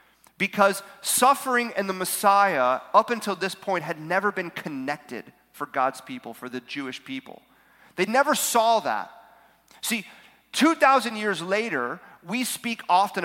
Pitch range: 160-220 Hz